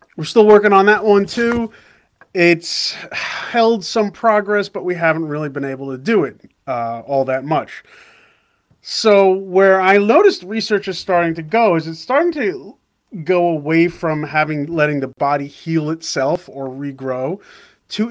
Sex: male